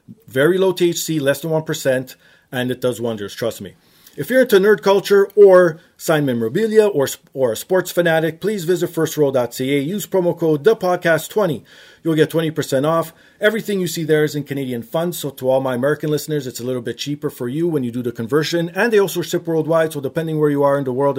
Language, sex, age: English, male, 40-59